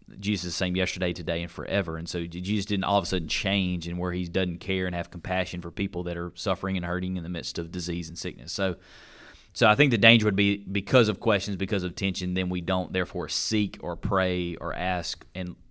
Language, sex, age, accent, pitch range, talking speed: English, male, 30-49, American, 85-100 Hz, 240 wpm